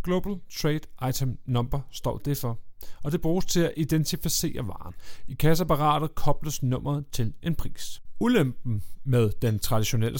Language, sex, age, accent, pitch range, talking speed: Danish, male, 30-49, native, 115-160 Hz, 145 wpm